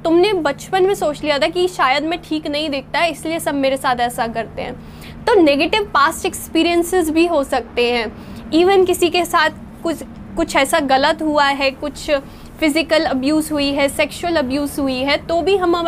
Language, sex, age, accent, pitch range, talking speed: Hindi, female, 20-39, native, 275-345 Hz, 190 wpm